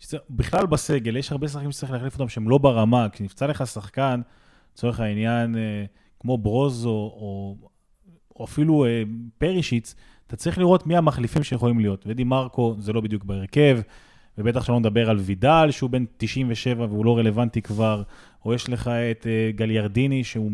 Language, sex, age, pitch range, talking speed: Hebrew, male, 20-39, 110-130 Hz, 160 wpm